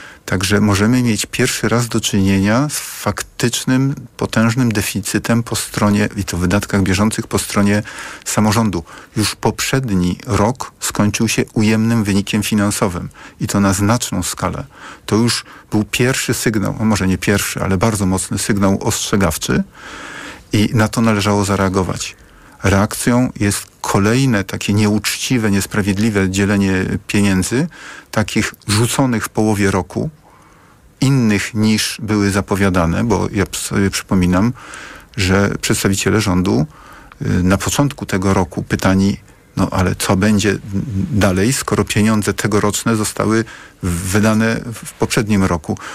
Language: Polish